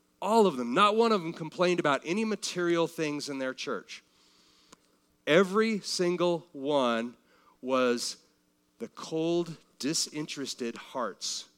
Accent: American